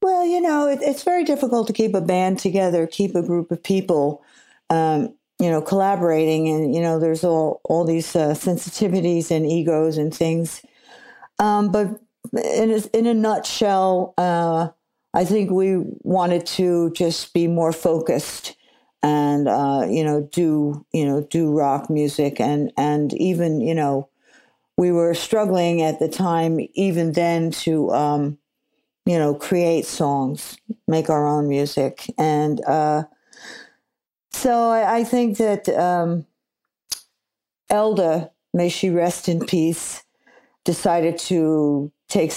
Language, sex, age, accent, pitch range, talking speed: English, female, 50-69, American, 150-185 Hz, 145 wpm